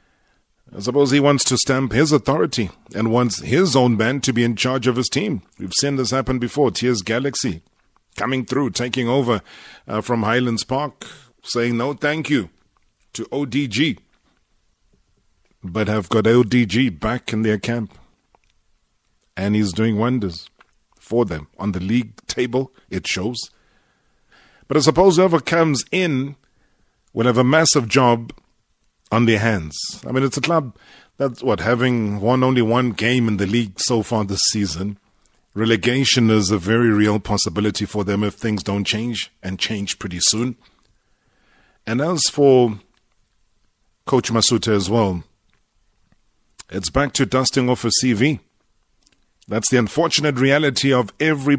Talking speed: 150 wpm